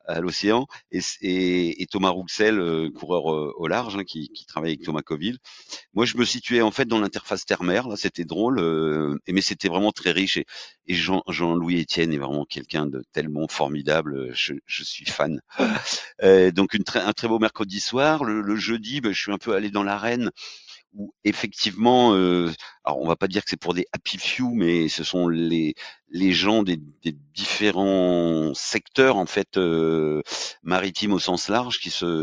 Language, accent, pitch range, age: French, French, 80-100 Hz, 40-59